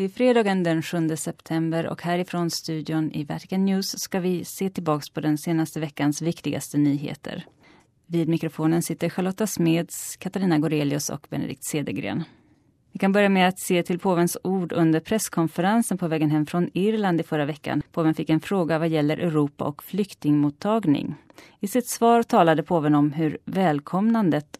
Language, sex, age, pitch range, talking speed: Swedish, female, 30-49, 150-180 Hz, 165 wpm